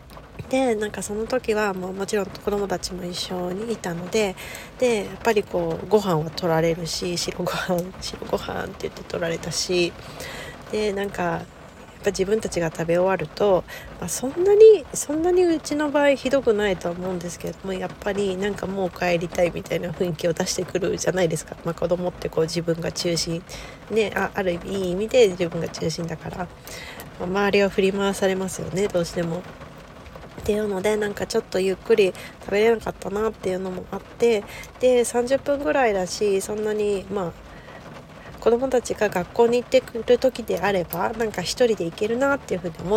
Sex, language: female, Japanese